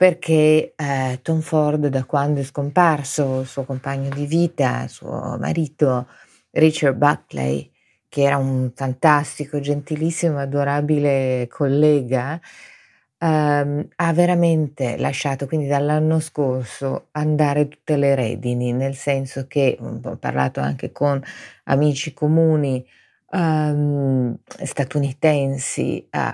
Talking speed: 105 wpm